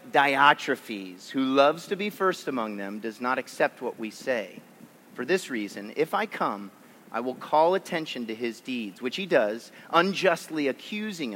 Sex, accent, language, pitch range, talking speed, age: male, American, English, 130-205 Hz, 170 wpm, 40-59